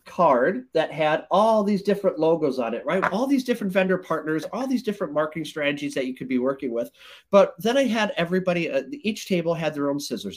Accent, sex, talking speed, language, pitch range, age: American, male, 220 wpm, English, 145-205 Hz, 40-59